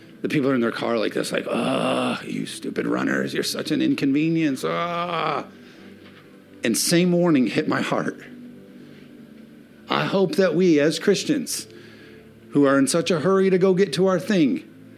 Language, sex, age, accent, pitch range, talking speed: English, male, 50-69, American, 115-165 Hz, 170 wpm